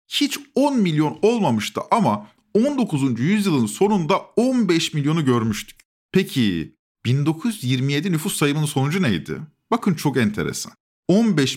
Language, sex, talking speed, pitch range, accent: Turkish, male, 110 wpm, 145-215 Hz, native